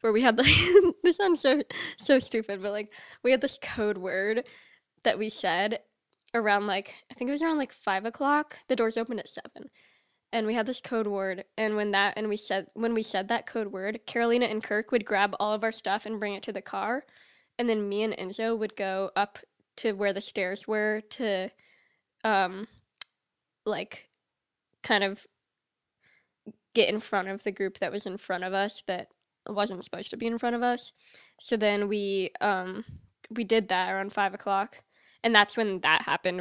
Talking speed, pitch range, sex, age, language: 200 wpm, 195-235 Hz, female, 10-29, English